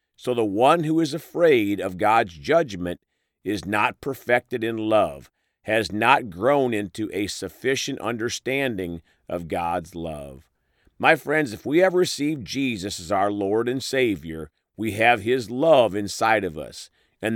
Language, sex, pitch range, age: English, male, 100-145 Hz, 50-69